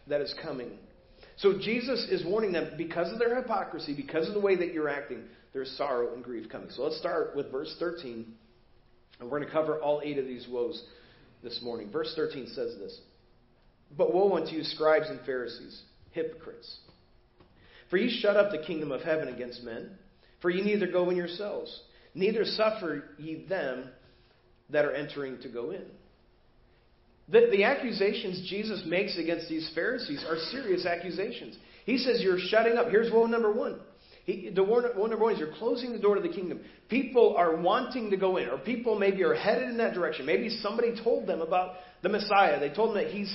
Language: English